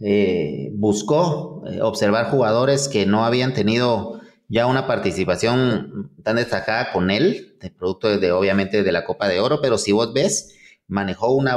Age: 30-49